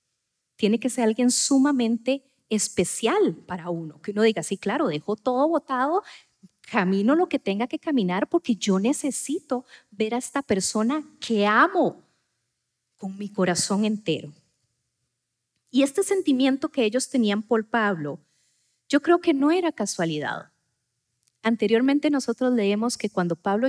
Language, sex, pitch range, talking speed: Spanish, female, 180-265 Hz, 140 wpm